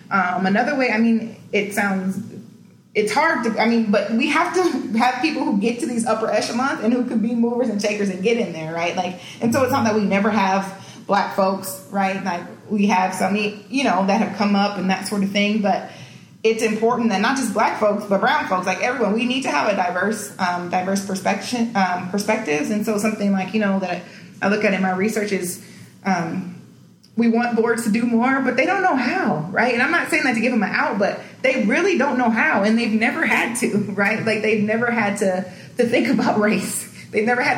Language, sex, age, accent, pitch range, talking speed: English, female, 30-49, American, 190-235 Hz, 235 wpm